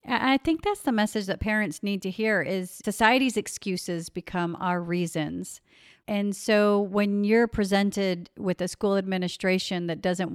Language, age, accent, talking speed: English, 50-69, American, 155 wpm